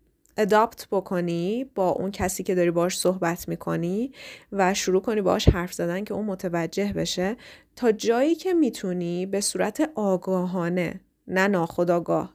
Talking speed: 140 wpm